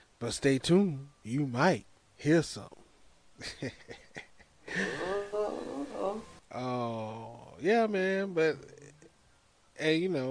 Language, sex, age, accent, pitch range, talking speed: English, male, 20-39, American, 120-155 Hz, 85 wpm